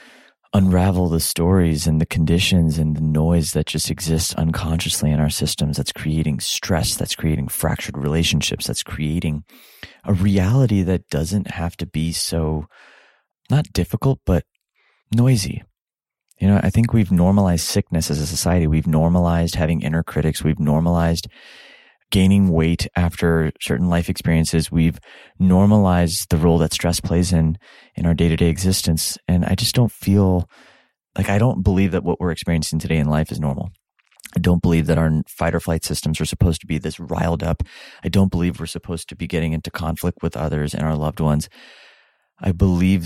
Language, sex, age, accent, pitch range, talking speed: English, male, 30-49, American, 80-90 Hz, 175 wpm